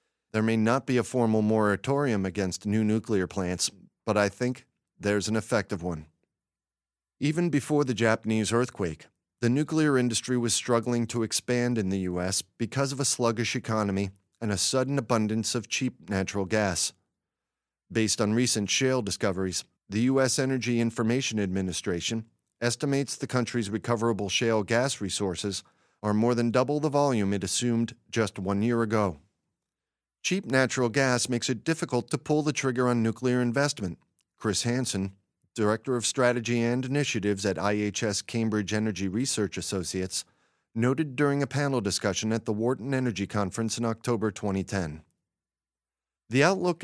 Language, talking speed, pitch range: English, 150 wpm, 100-125 Hz